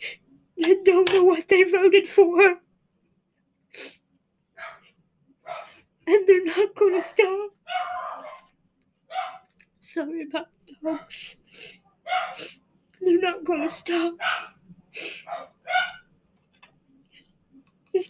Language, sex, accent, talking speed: English, female, American, 70 wpm